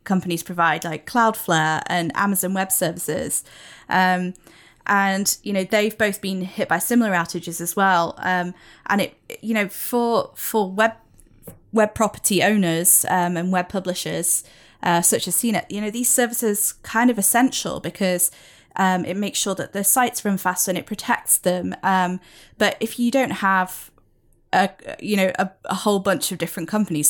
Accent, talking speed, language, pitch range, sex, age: British, 170 wpm, English, 180-210 Hz, female, 10-29